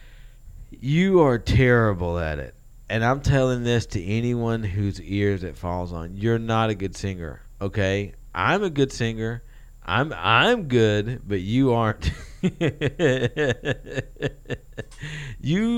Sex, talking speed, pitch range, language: male, 125 wpm, 105-160 Hz, English